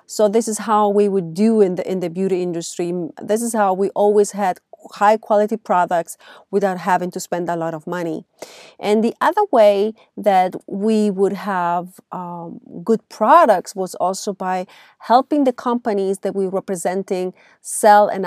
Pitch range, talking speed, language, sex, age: 185-235 Hz, 175 wpm, English, female, 30-49